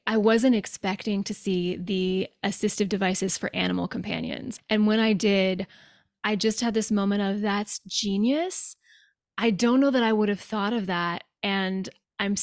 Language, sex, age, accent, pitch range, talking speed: English, female, 20-39, American, 190-220 Hz, 170 wpm